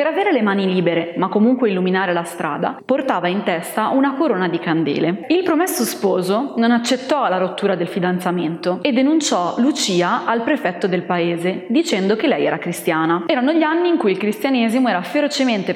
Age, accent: 20-39, native